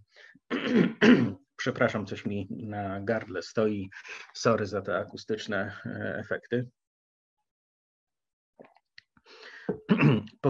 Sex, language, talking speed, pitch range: male, Polish, 70 wpm, 105-130 Hz